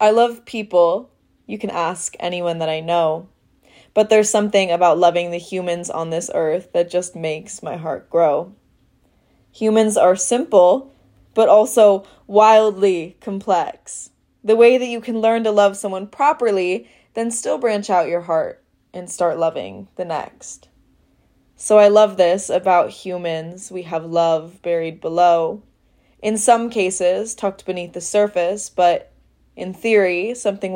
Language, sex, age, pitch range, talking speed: English, female, 20-39, 175-220 Hz, 150 wpm